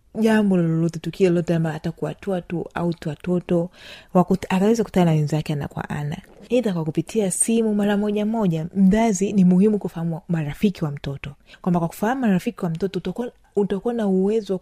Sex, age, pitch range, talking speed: female, 30-49, 170-215 Hz, 150 wpm